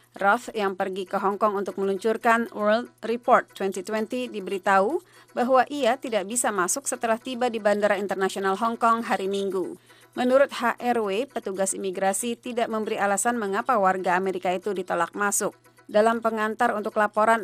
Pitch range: 200-240 Hz